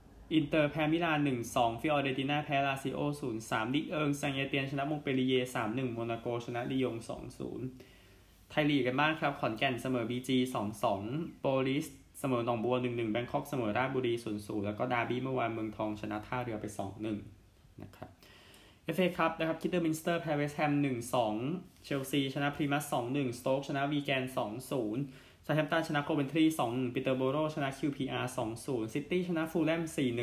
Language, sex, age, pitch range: Thai, male, 20-39, 115-145 Hz